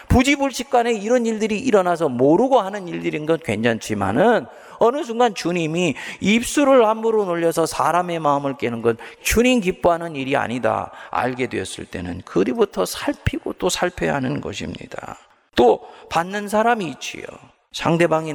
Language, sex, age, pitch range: Korean, male, 40-59, 110-170 Hz